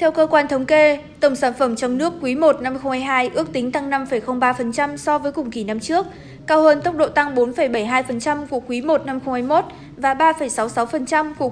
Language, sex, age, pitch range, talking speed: Vietnamese, female, 20-39, 250-295 Hz, 200 wpm